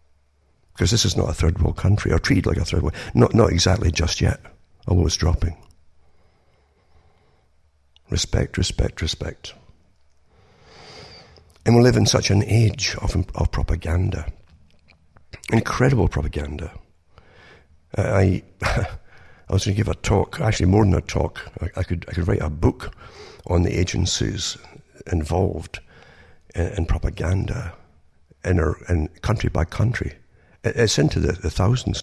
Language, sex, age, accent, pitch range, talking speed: English, male, 60-79, British, 80-110 Hz, 140 wpm